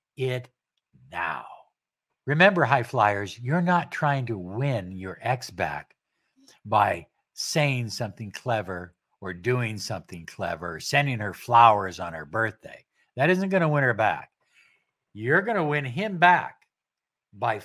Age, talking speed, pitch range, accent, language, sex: 60-79, 140 wpm, 105-150 Hz, American, English, male